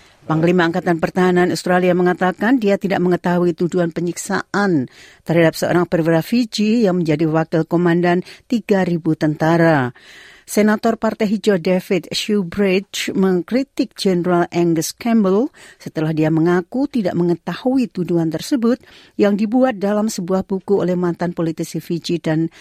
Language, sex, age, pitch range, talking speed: Indonesian, female, 50-69, 155-190 Hz, 120 wpm